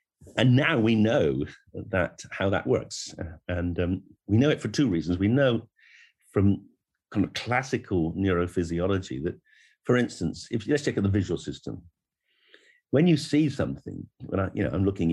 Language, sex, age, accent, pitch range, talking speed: English, male, 50-69, British, 85-110 Hz, 165 wpm